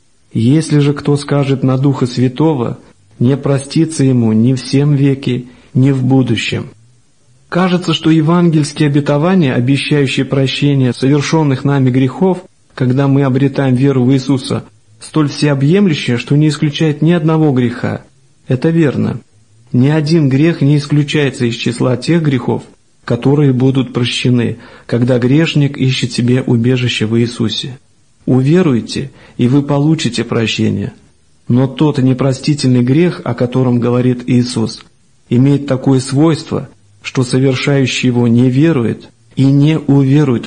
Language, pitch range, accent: Russian, 120-150 Hz, native